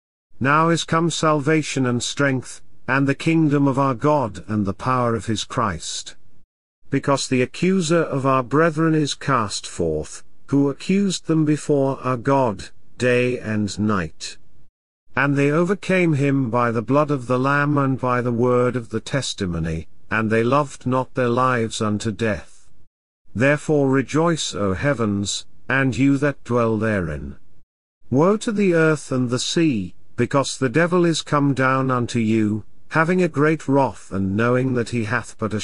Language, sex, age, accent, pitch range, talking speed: English, male, 50-69, British, 110-145 Hz, 160 wpm